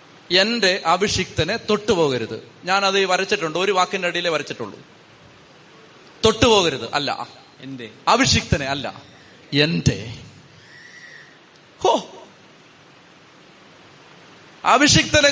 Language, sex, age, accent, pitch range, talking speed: Malayalam, male, 30-49, native, 155-200 Hz, 65 wpm